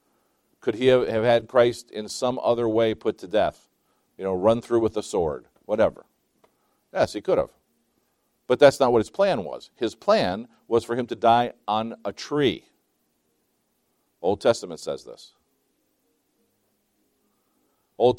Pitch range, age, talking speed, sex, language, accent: 100-120 Hz, 50-69, 150 wpm, male, English, American